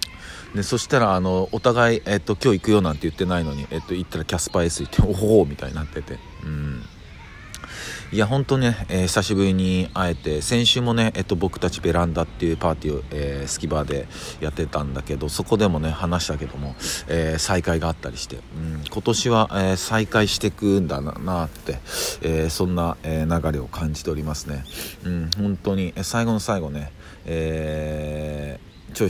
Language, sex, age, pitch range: Japanese, male, 40-59, 80-100 Hz